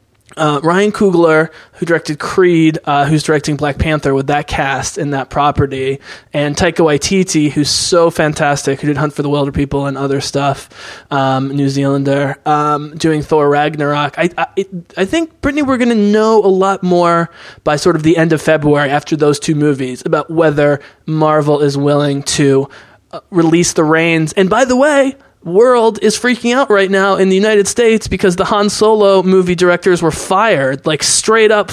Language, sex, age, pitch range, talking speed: English, male, 20-39, 150-195 Hz, 185 wpm